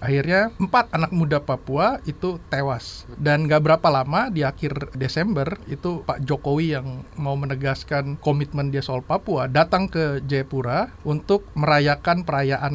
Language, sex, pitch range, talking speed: Indonesian, male, 135-170 Hz, 140 wpm